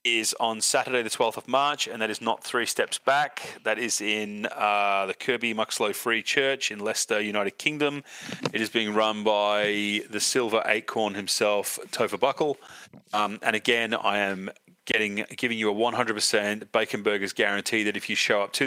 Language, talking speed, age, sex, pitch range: English, 185 wpm, 30-49, male, 100-125 Hz